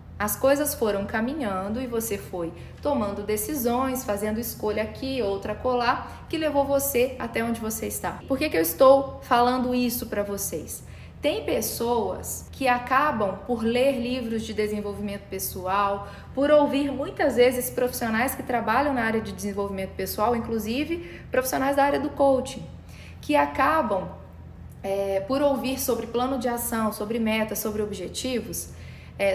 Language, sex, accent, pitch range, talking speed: Portuguese, female, Brazilian, 205-255 Hz, 145 wpm